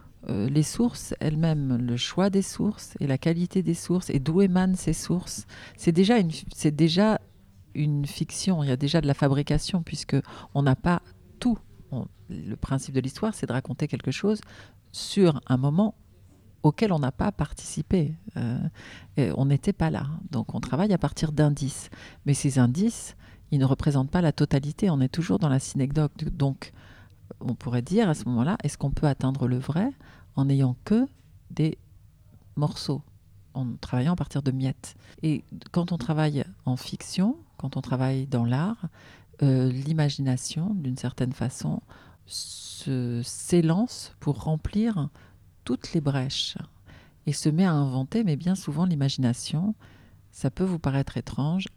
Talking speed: 165 wpm